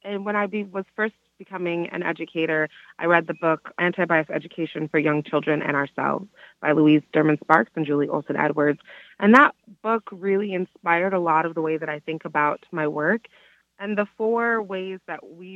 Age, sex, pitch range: 30-49, female, 155-190 Hz